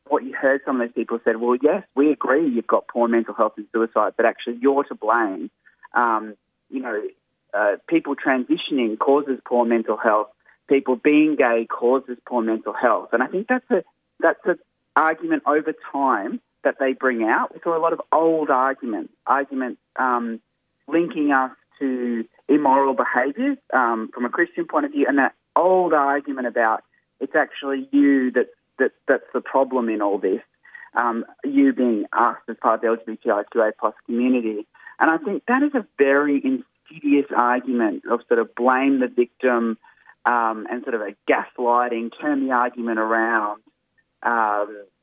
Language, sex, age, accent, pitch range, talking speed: English, male, 20-39, Australian, 120-150 Hz, 170 wpm